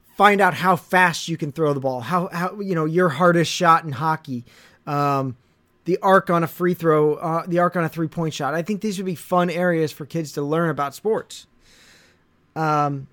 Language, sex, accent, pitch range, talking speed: English, male, American, 135-175 Hz, 215 wpm